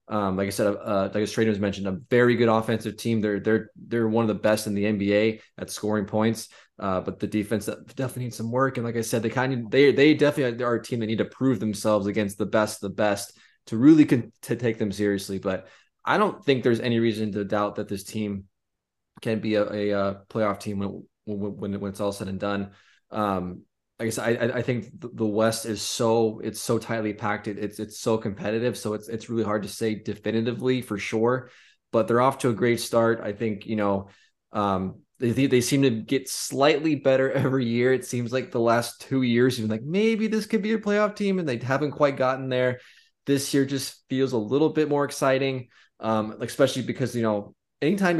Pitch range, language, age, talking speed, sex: 105-125 Hz, English, 20-39, 225 wpm, male